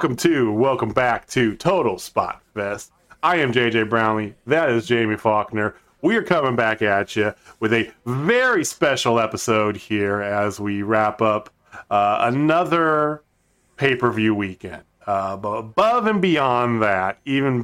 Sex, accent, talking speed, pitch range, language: male, American, 155 wpm, 110-140 Hz, English